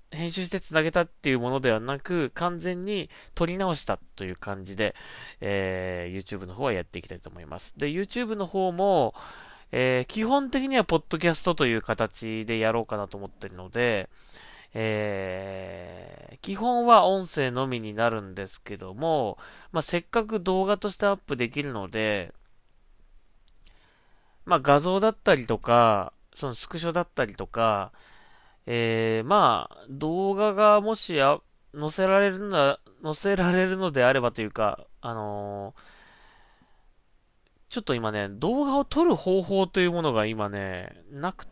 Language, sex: Japanese, male